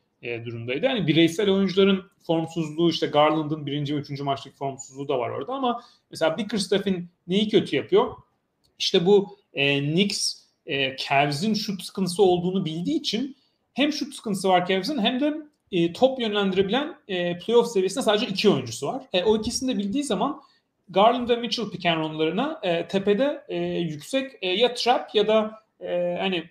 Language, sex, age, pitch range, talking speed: Turkish, male, 40-59, 165-230 Hz, 155 wpm